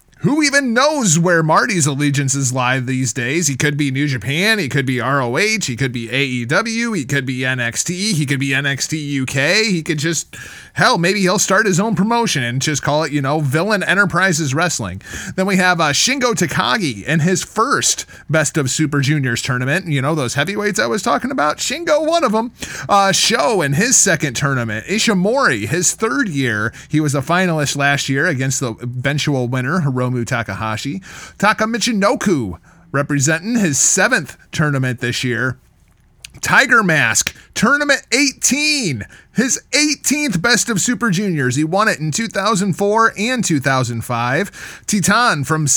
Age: 30-49